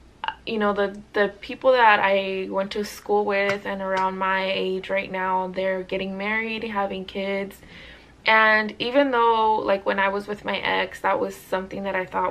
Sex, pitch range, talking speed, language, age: female, 190-215 Hz, 185 wpm, English, 20-39